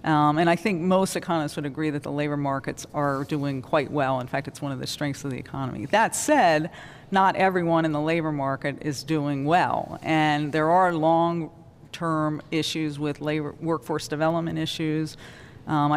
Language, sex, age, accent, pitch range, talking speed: English, female, 40-59, American, 150-170 Hz, 180 wpm